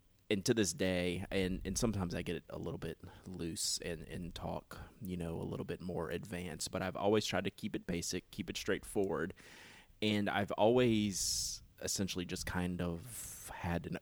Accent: American